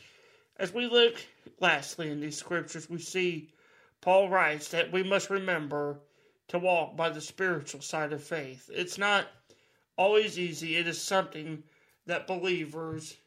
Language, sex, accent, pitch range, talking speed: English, male, American, 150-190 Hz, 145 wpm